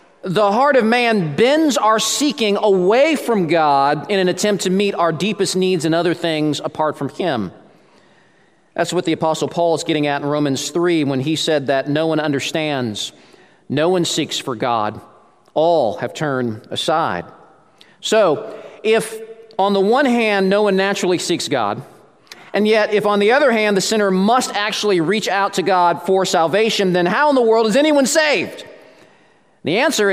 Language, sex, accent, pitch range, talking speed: English, male, American, 175-245 Hz, 175 wpm